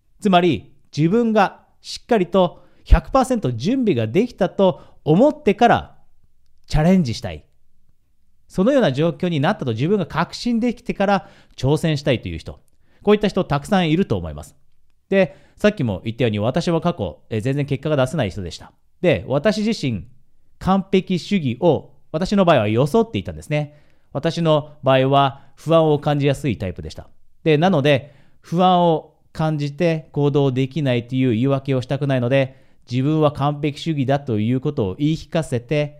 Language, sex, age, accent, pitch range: Japanese, male, 40-59, native, 120-175 Hz